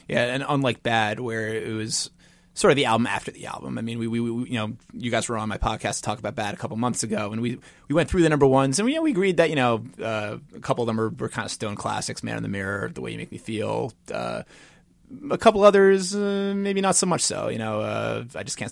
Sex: male